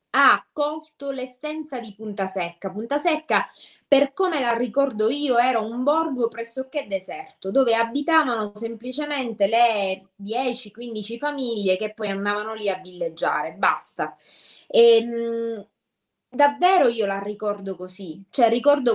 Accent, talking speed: native, 120 wpm